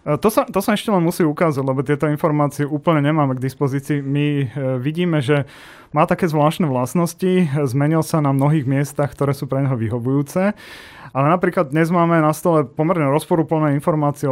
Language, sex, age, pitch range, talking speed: Slovak, male, 30-49, 135-155 Hz, 170 wpm